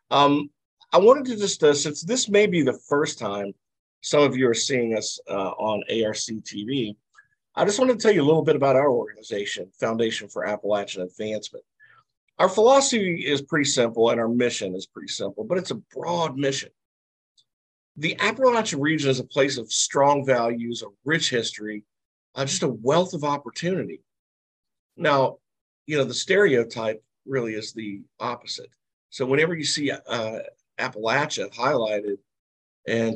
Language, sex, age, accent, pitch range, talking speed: English, male, 50-69, American, 110-150 Hz, 165 wpm